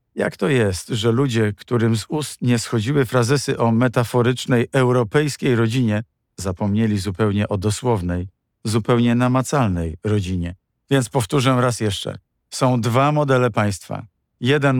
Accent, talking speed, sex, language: native, 125 wpm, male, Polish